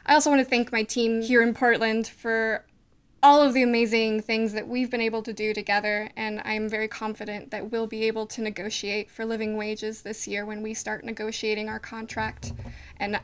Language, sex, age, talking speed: English, female, 10-29, 205 wpm